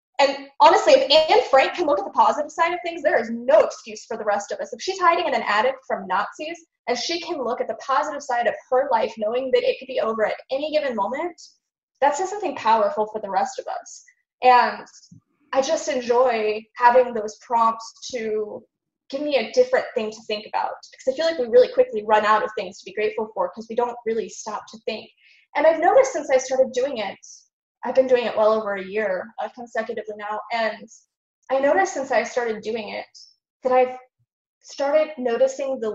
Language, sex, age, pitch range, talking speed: English, female, 10-29, 220-295 Hz, 215 wpm